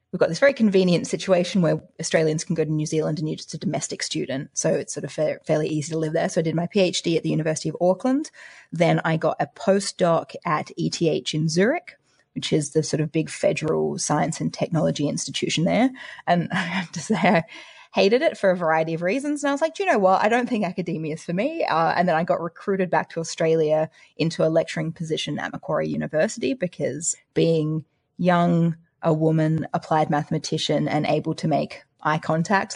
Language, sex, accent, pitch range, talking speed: English, female, Australian, 155-190 Hz, 215 wpm